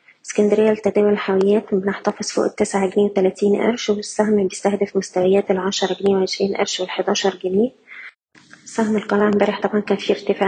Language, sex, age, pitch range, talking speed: Arabic, female, 20-39, 190-205 Hz, 145 wpm